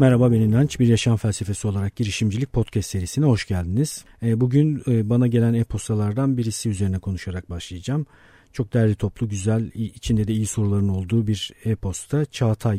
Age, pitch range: 50-69, 95-125 Hz